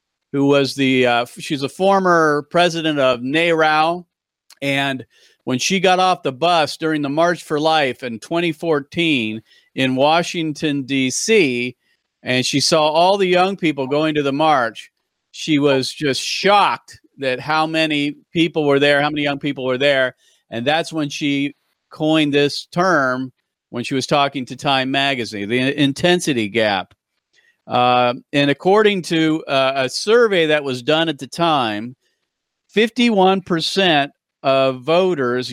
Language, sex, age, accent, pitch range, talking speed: English, male, 40-59, American, 135-170 Hz, 150 wpm